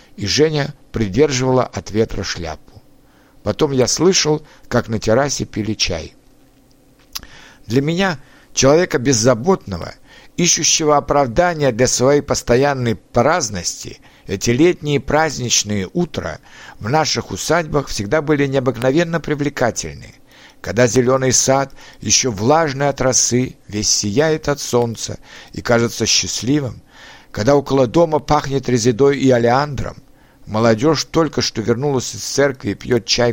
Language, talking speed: Russian, 115 wpm